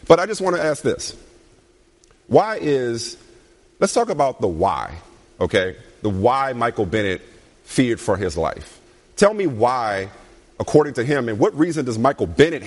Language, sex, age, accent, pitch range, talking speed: English, male, 40-59, American, 125-190 Hz, 165 wpm